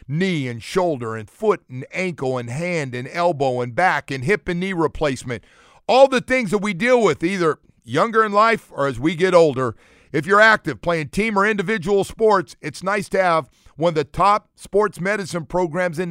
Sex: male